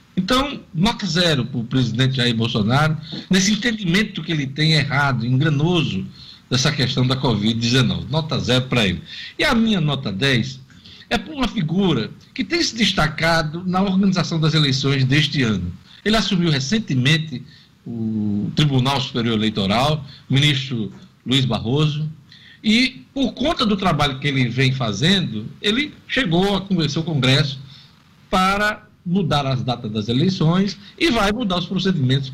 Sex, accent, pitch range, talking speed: male, Brazilian, 130-180 Hz, 145 wpm